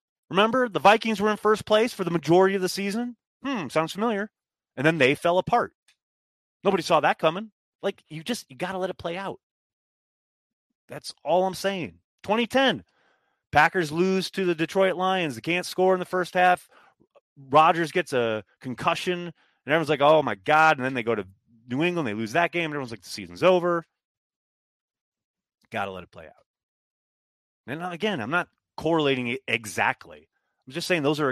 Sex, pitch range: male, 125-185 Hz